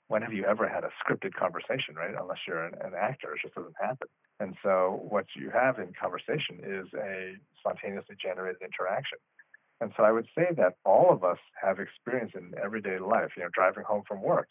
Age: 40-59